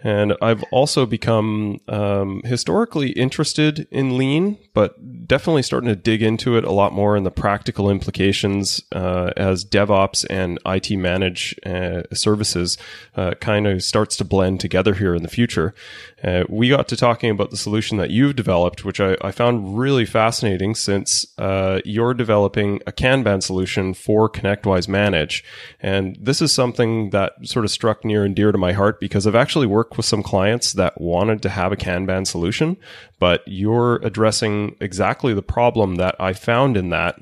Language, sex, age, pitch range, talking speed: English, male, 30-49, 95-115 Hz, 175 wpm